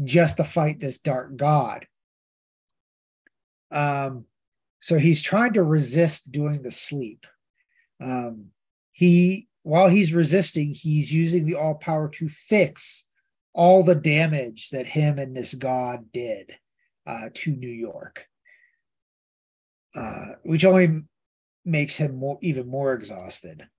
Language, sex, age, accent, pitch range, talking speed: English, male, 30-49, American, 125-160 Hz, 125 wpm